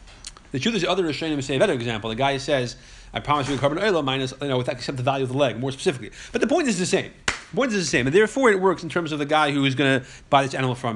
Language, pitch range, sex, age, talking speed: English, 125-165 Hz, male, 30-49, 325 wpm